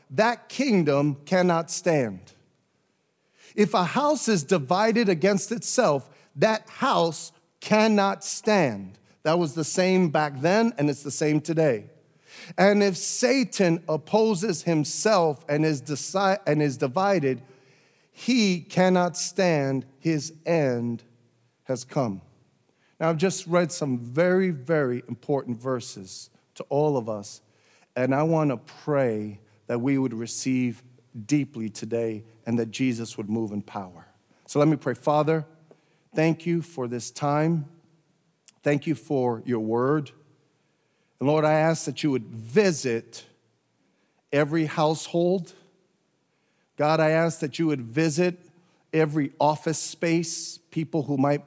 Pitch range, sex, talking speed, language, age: 130-175 Hz, male, 130 wpm, English, 40-59